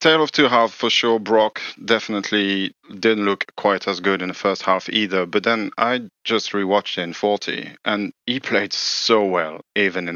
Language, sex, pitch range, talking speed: English, male, 85-105 Hz, 195 wpm